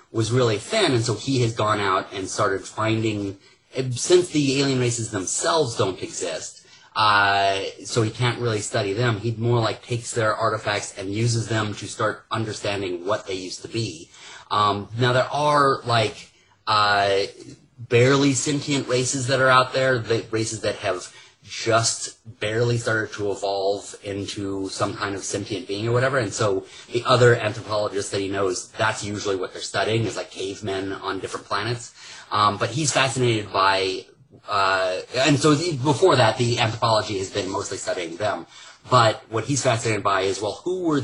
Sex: male